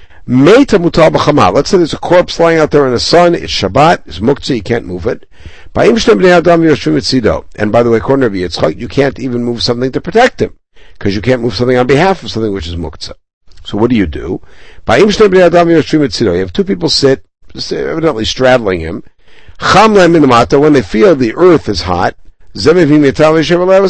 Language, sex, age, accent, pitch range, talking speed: English, male, 60-79, American, 115-170 Hz, 160 wpm